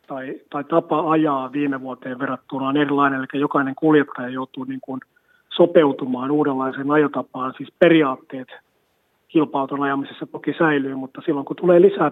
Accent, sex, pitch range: native, male, 135-160 Hz